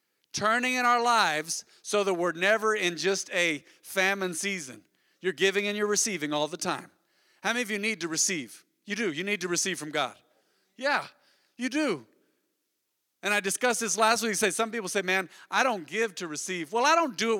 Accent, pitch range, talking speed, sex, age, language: American, 180-240 Hz, 205 wpm, male, 40-59, English